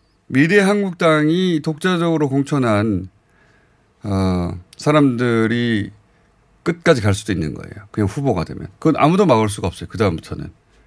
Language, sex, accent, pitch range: Korean, male, native, 90-130 Hz